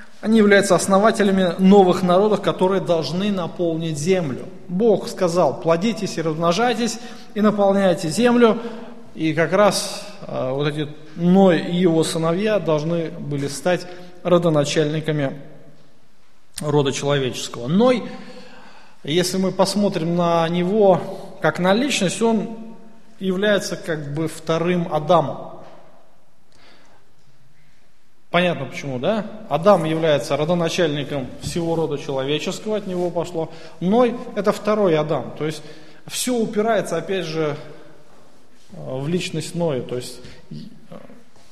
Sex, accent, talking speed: male, native, 105 wpm